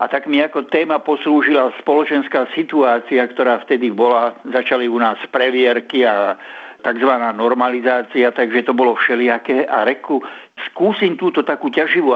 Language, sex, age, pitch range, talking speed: Slovak, male, 60-79, 120-140 Hz, 140 wpm